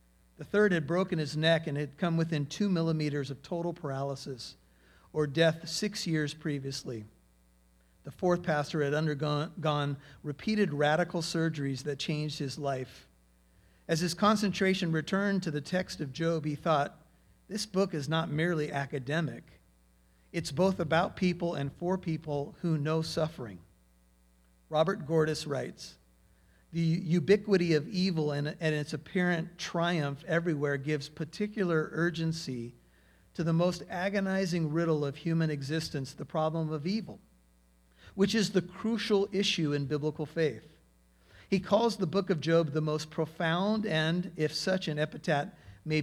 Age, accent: 50-69, American